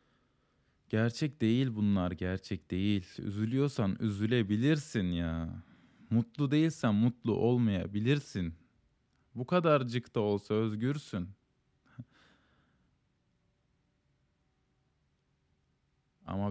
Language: Turkish